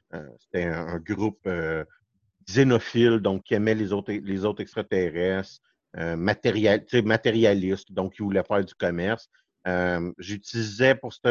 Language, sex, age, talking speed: French, male, 50-69, 145 wpm